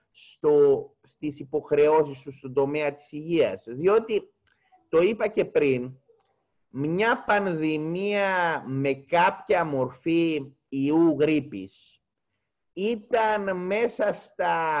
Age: 30-49